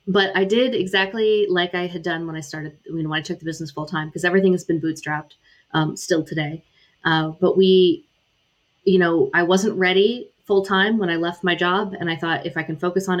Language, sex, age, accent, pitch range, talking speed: English, female, 30-49, American, 160-190 Hz, 225 wpm